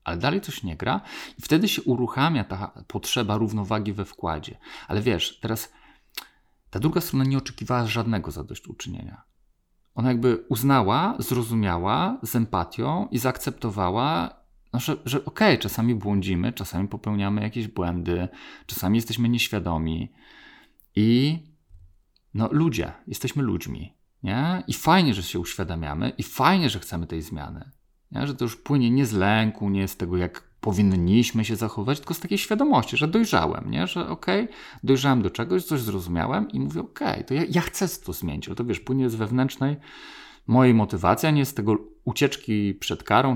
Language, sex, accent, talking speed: Polish, male, native, 165 wpm